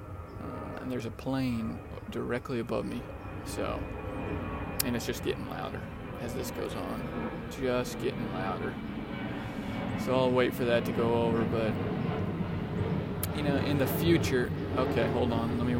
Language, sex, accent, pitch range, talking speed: English, male, American, 100-135 Hz, 145 wpm